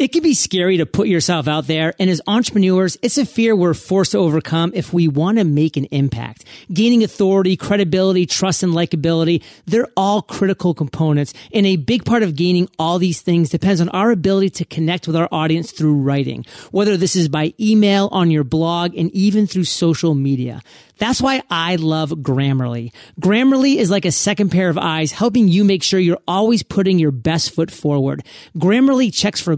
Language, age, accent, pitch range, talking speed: English, 30-49, American, 160-200 Hz, 195 wpm